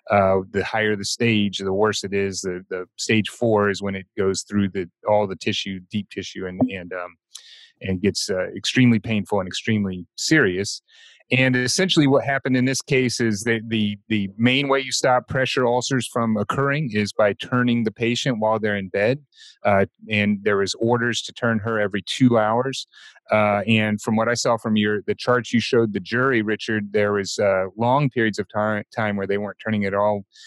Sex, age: male, 30-49